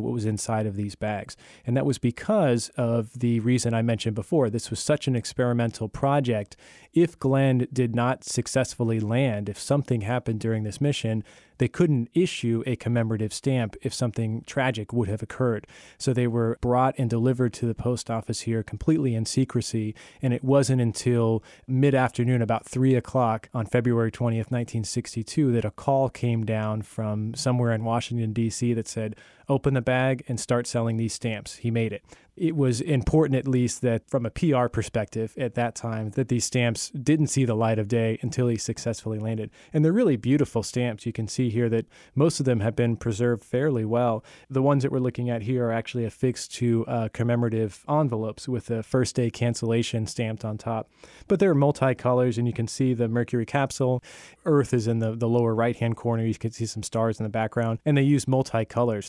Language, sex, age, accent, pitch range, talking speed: English, male, 20-39, American, 115-130 Hz, 195 wpm